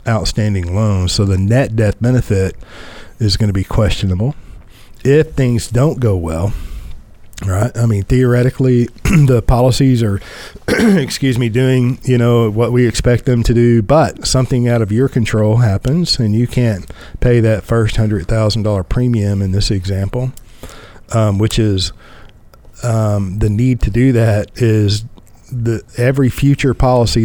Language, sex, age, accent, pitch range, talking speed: English, male, 50-69, American, 105-125 Hz, 150 wpm